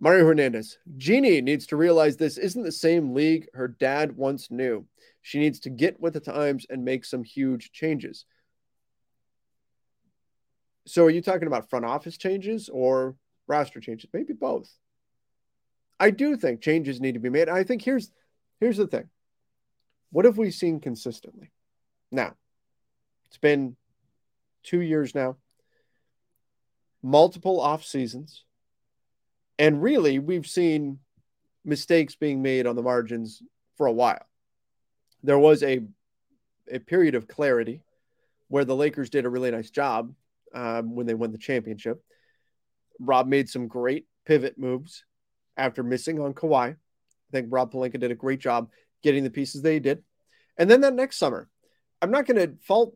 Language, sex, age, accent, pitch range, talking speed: English, male, 30-49, American, 125-165 Hz, 150 wpm